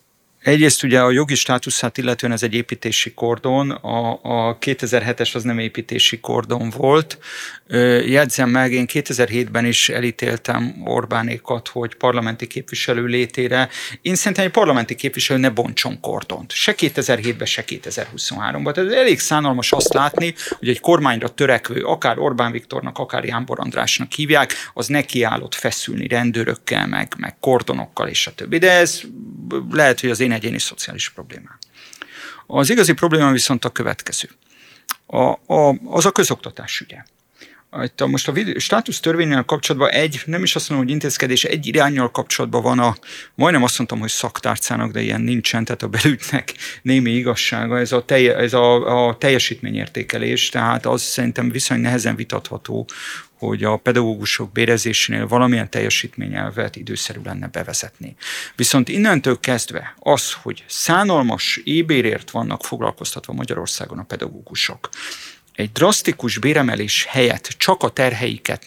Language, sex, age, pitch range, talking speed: Hungarian, male, 30-49, 120-140 Hz, 140 wpm